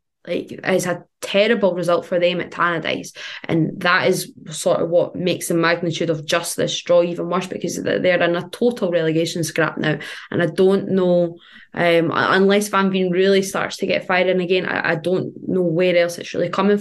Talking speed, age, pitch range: 200 wpm, 20-39, 170-195 Hz